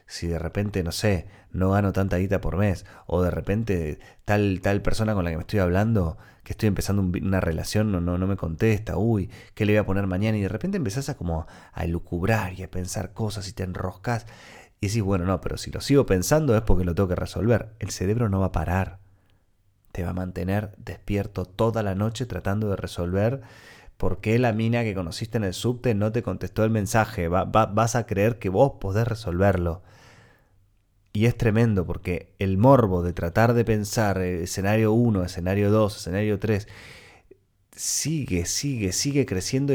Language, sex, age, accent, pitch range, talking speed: Spanish, male, 30-49, Argentinian, 95-120 Hz, 195 wpm